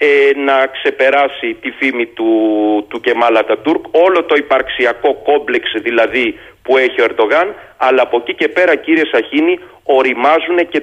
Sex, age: male, 40-59